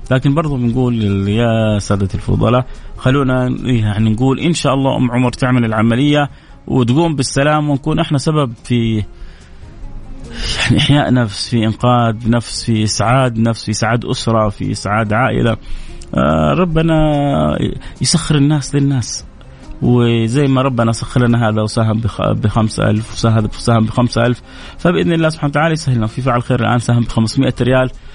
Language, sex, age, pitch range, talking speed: Arabic, male, 30-49, 115-140 Hz, 145 wpm